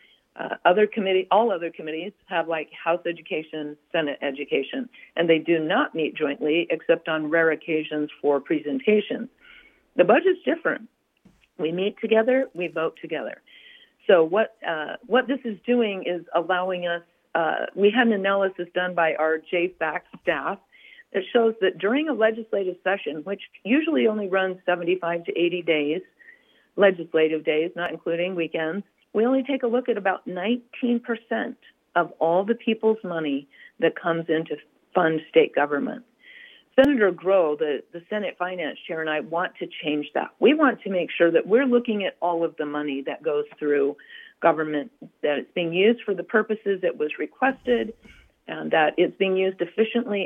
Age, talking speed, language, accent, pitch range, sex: 50-69, 165 wpm, English, American, 165-235 Hz, female